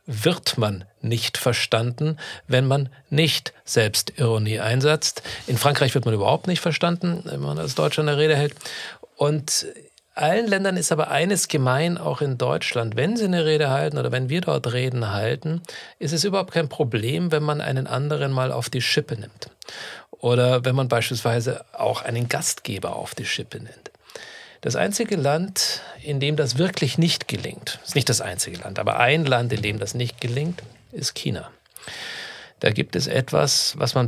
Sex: male